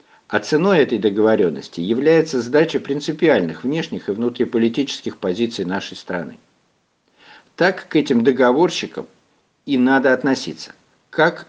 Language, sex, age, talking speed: Russian, male, 60-79, 115 wpm